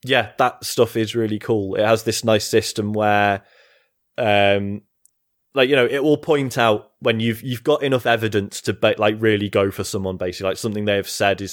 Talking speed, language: 205 wpm, English